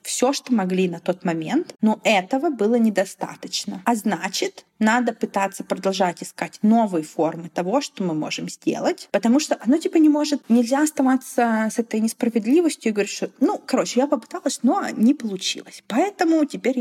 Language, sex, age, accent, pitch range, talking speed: Russian, female, 20-39, native, 190-260 Hz, 160 wpm